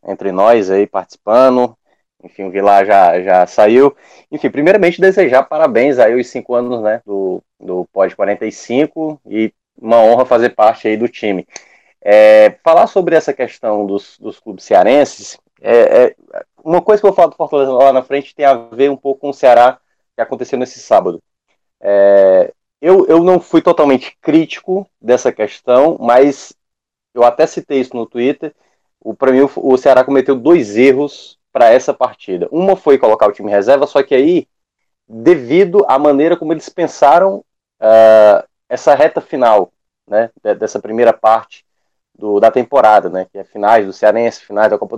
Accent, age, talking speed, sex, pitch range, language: Brazilian, 20-39, 170 wpm, male, 110-155 Hz, Portuguese